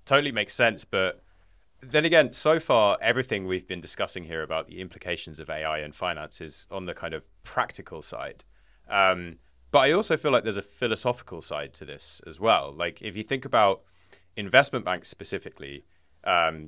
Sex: male